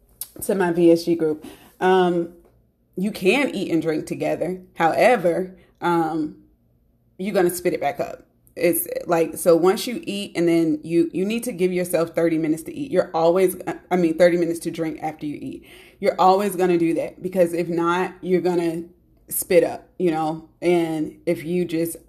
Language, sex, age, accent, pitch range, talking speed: English, female, 30-49, American, 165-190 Hz, 185 wpm